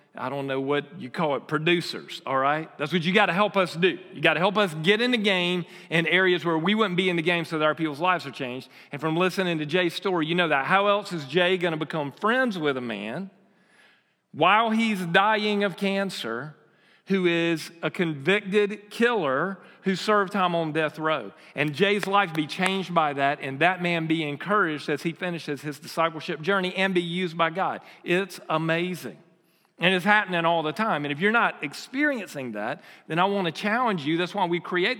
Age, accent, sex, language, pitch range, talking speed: 40-59, American, male, English, 160-200 Hz, 215 wpm